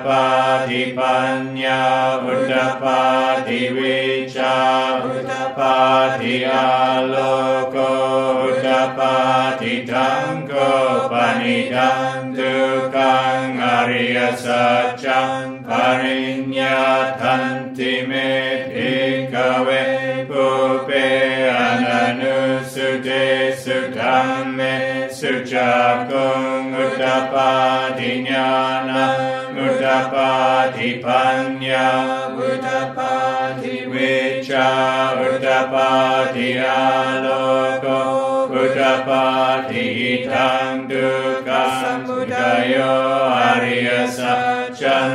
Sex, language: male, English